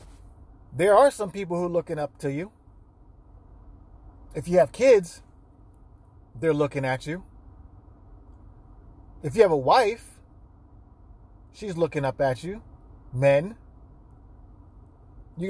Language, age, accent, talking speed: English, 30-49, American, 115 wpm